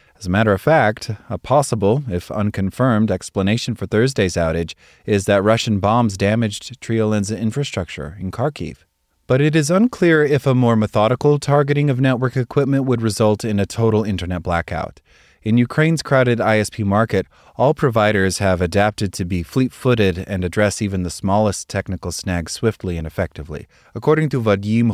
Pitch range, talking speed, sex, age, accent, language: 95-120 Hz, 160 wpm, male, 30-49, American, English